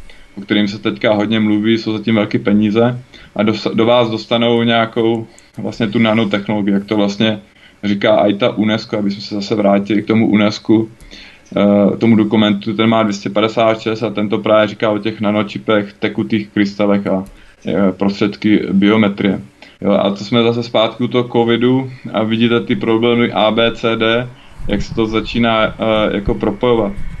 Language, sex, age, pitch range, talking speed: Czech, male, 20-39, 105-120 Hz, 155 wpm